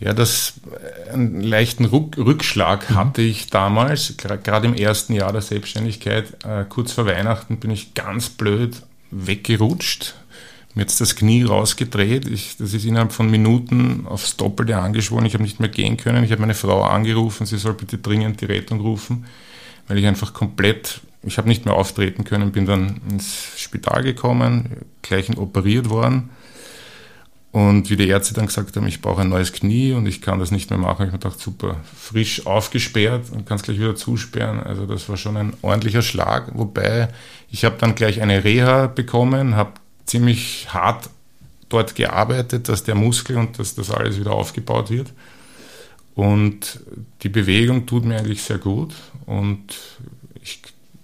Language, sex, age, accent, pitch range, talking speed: German, male, 50-69, Austrian, 105-120 Hz, 165 wpm